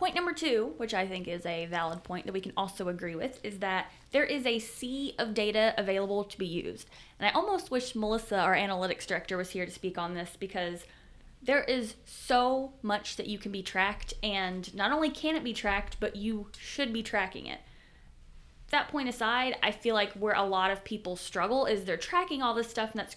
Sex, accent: female, American